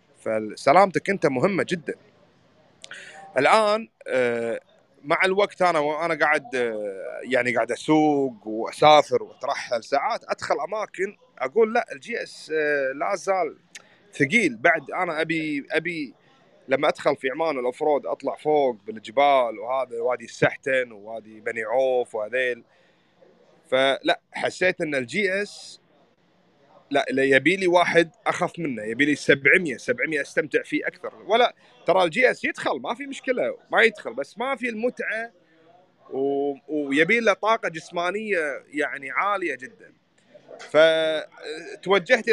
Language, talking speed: Arabic, 120 wpm